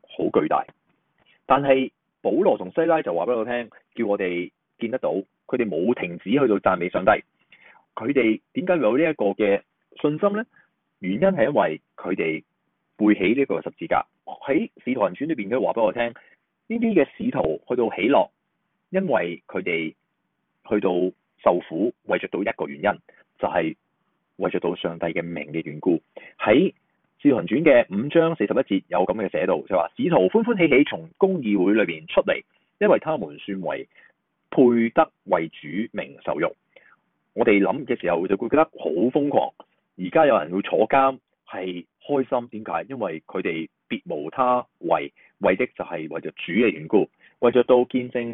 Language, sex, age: Chinese, male, 30-49